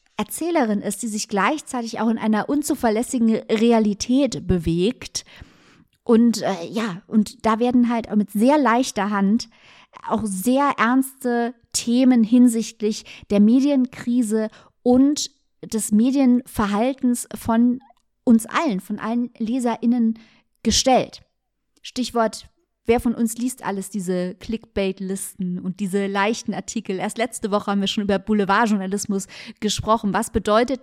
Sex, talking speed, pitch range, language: female, 125 wpm, 200-245 Hz, German